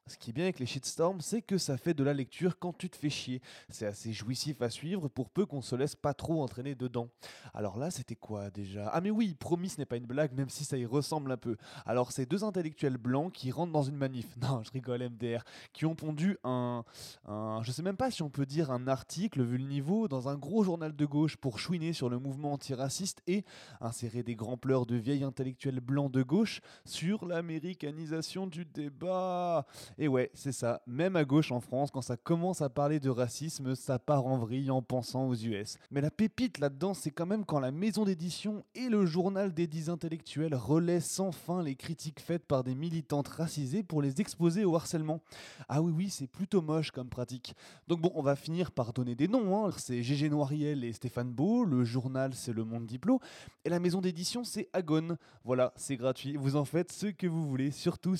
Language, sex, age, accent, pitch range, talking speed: French, male, 20-39, French, 125-170 Hz, 225 wpm